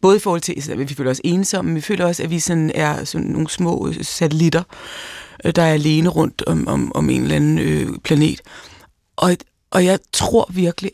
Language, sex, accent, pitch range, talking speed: Danish, female, native, 160-190 Hz, 205 wpm